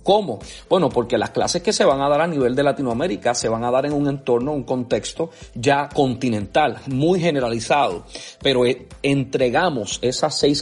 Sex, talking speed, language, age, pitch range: male, 175 wpm, Spanish, 30-49, 120-165 Hz